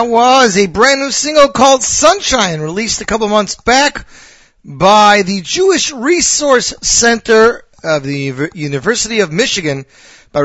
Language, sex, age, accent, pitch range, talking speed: English, male, 40-59, American, 135-210 Hz, 140 wpm